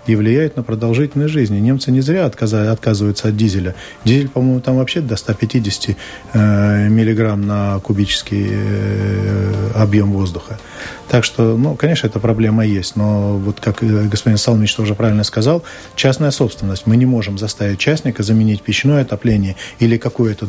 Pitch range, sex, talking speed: 105-120 Hz, male, 145 wpm